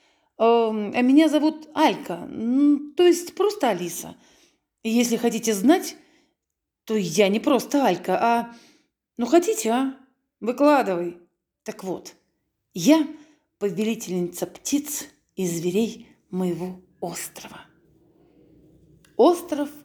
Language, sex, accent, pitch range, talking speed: Russian, female, native, 190-265 Hz, 95 wpm